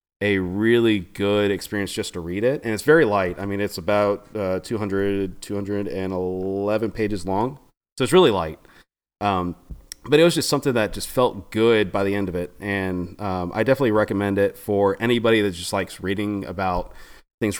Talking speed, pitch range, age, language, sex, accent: 185 wpm, 90-115 Hz, 30-49, English, male, American